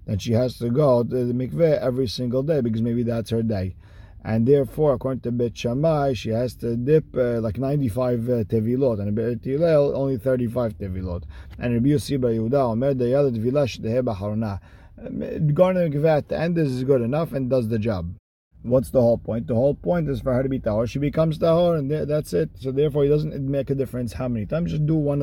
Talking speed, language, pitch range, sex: 205 wpm, English, 110-135 Hz, male